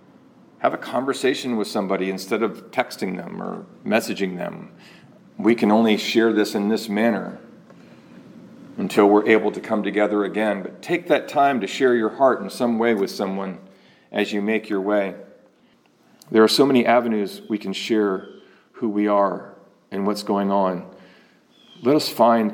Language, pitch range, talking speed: English, 100-115 Hz, 170 wpm